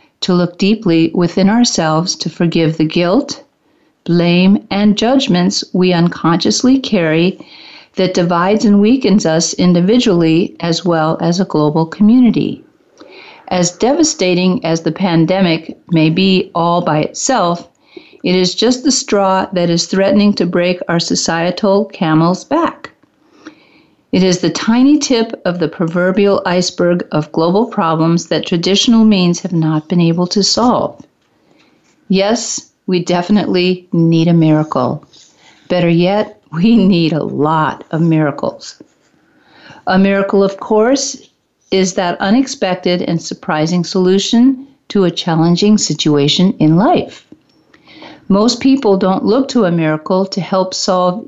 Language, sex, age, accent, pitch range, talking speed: English, female, 50-69, American, 170-215 Hz, 130 wpm